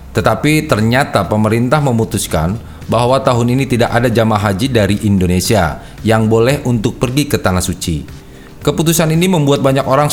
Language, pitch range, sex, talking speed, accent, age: Indonesian, 100-130 Hz, male, 150 wpm, native, 40-59